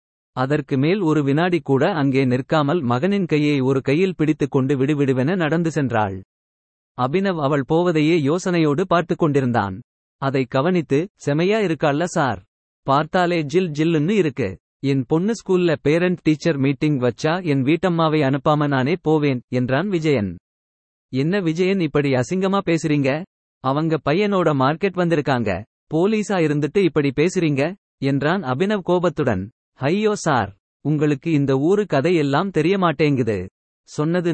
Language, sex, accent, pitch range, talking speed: Tamil, male, native, 135-170 Hz, 120 wpm